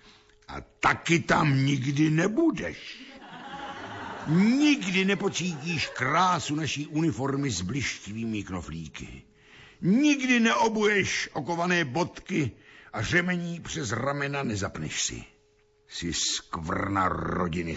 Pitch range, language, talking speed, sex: 100-160 Hz, Slovak, 90 wpm, male